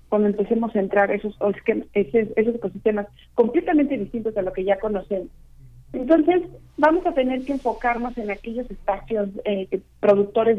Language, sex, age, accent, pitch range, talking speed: Spanish, female, 40-59, Mexican, 200-235 Hz, 140 wpm